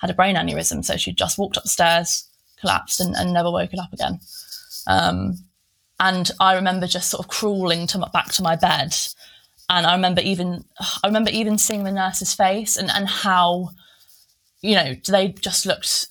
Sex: female